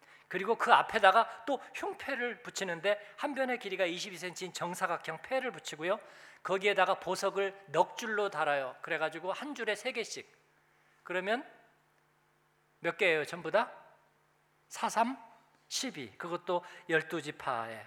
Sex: male